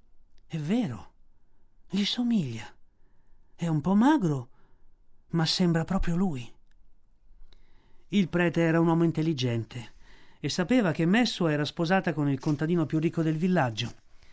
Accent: native